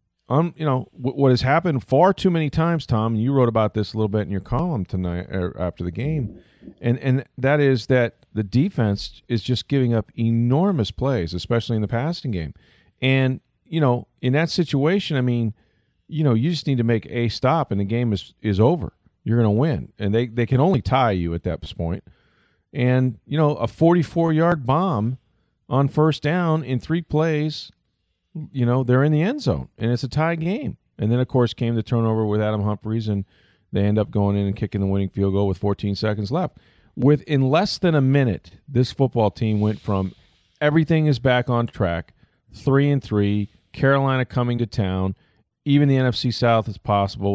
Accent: American